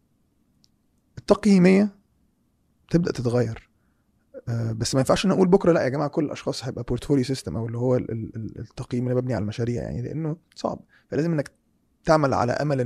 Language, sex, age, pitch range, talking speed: Arabic, male, 20-39, 115-145 Hz, 160 wpm